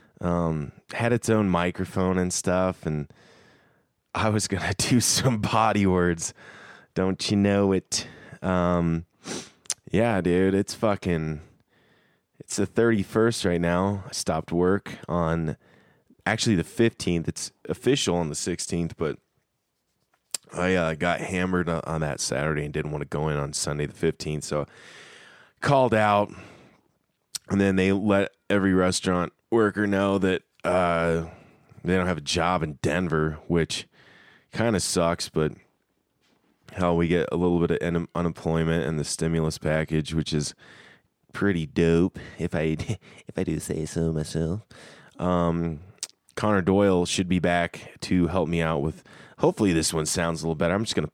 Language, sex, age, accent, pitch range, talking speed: English, male, 20-39, American, 80-95 Hz, 155 wpm